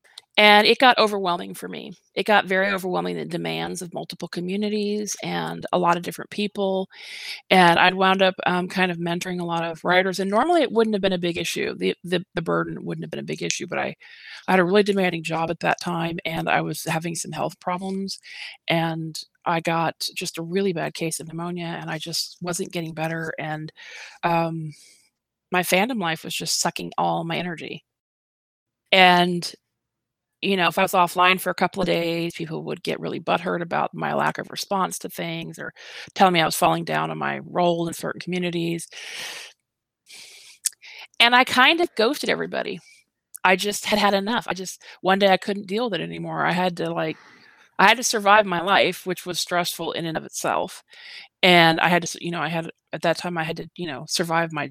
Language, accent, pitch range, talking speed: English, American, 165-195 Hz, 210 wpm